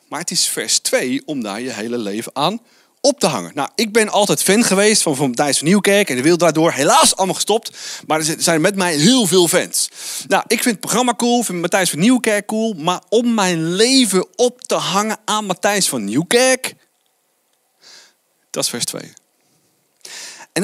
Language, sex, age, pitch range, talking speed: Dutch, male, 30-49, 175-245 Hz, 190 wpm